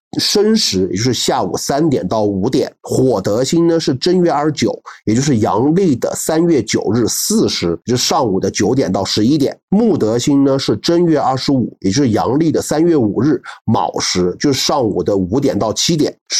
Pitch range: 120-170 Hz